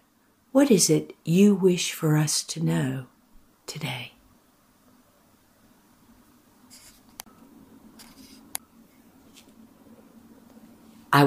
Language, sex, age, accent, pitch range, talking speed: English, female, 60-79, American, 170-250 Hz, 60 wpm